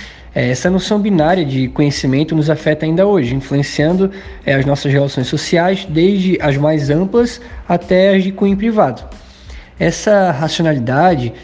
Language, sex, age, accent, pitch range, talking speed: Portuguese, male, 20-39, Brazilian, 145-185 Hz, 130 wpm